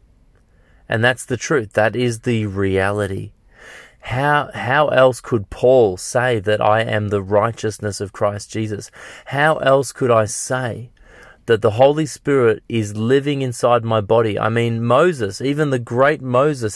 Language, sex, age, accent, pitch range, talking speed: English, male, 30-49, Australian, 105-135 Hz, 155 wpm